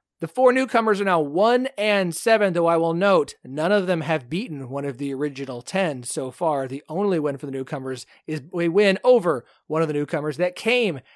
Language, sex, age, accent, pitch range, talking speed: English, male, 30-49, American, 150-210 Hz, 215 wpm